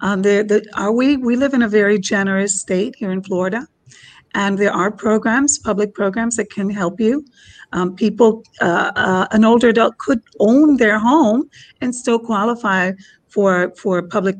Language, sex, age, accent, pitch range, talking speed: English, female, 40-59, American, 200-240 Hz, 175 wpm